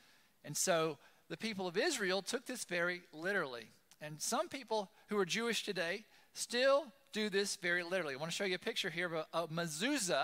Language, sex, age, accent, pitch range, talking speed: English, male, 40-59, American, 180-235 Hz, 200 wpm